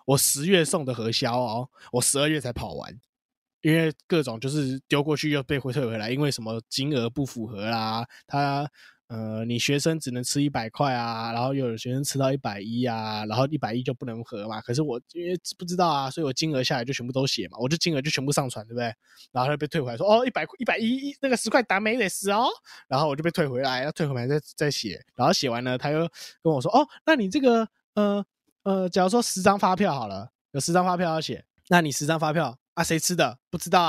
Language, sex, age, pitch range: Chinese, male, 20-39, 125-170 Hz